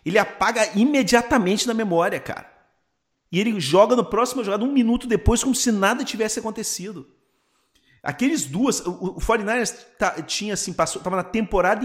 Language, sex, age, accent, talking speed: Portuguese, male, 40-59, Brazilian, 150 wpm